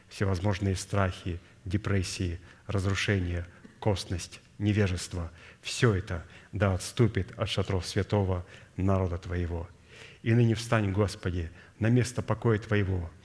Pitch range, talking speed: 95-110 Hz, 110 wpm